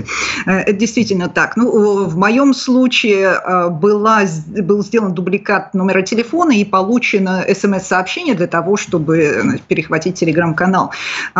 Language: Russian